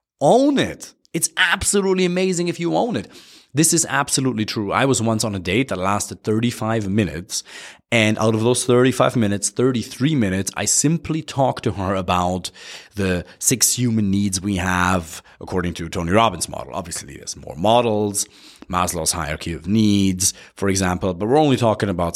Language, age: English, 30-49